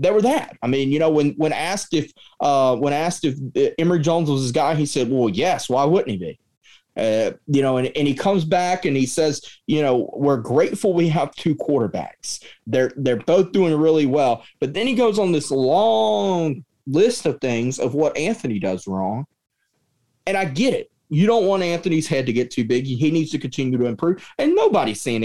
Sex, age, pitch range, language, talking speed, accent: male, 30-49, 125-190 Hz, English, 215 wpm, American